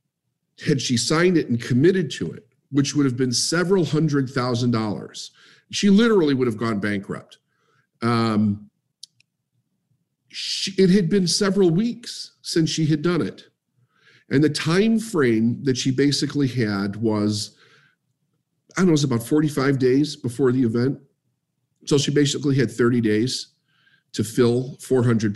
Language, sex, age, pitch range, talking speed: English, male, 50-69, 115-155 Hz, 150 wpm